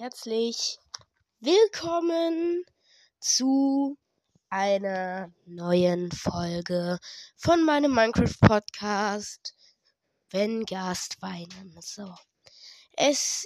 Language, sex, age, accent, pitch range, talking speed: German, female, 20-39, German, 200-270 Hz, 60 wpm